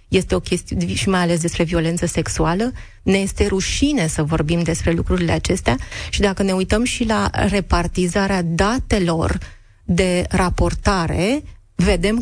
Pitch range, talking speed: 175-200 Hz, 140 wpm